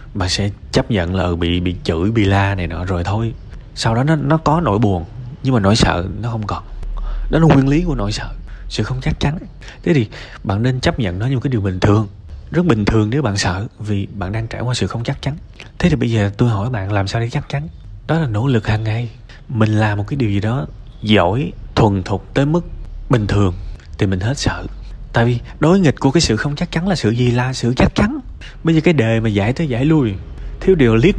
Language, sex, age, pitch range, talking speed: Vietnamese, male, 20-39, 100-135 Hz, 255 wpm